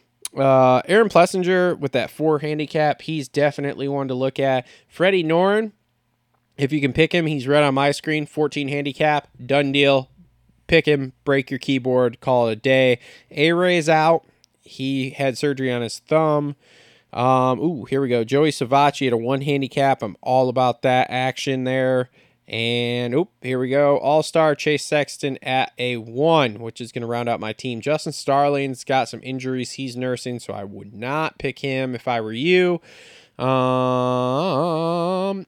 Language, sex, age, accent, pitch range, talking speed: English, male, 20-39, American, 125-145 Hz, 170 wpm